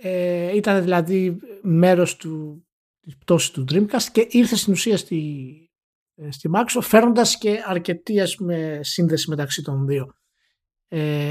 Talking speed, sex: 125 wpm, male